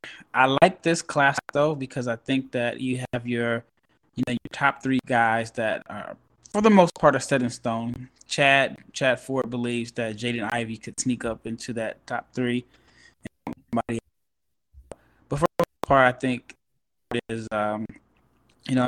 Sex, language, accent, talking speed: male, English, American, 170 wpm